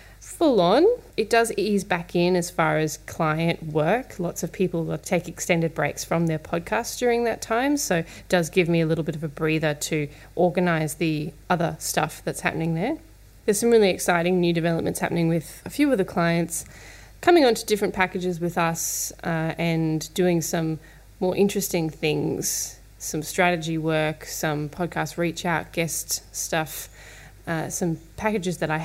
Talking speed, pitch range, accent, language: 175 wpm, 155-180 Hz, Australian, English